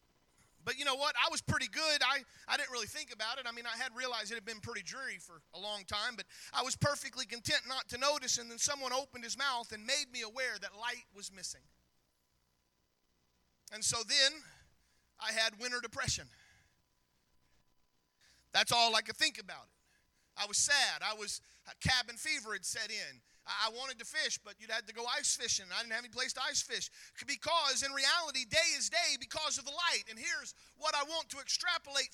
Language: English